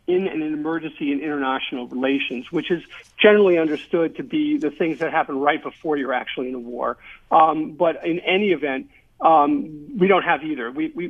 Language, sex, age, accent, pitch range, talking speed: English, male, 50-69, American, 140-175 Hz, 190 wpm